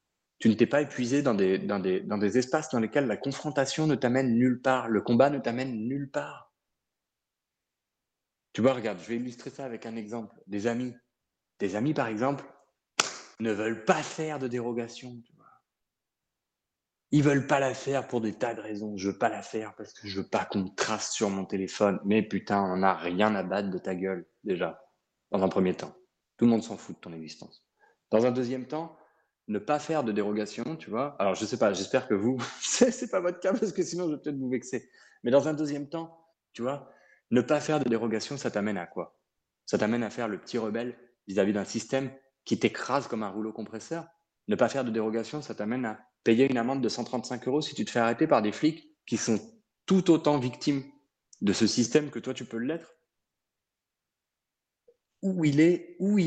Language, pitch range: French, 110-150 Hz